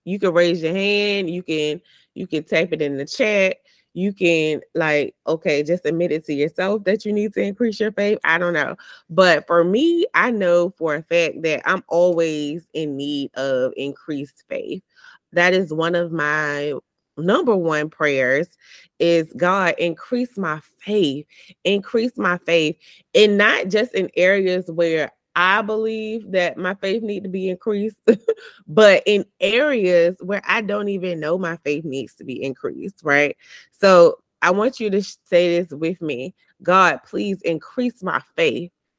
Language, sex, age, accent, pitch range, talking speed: English, female, 20-39, American, 155-210 Hz, 170 wpm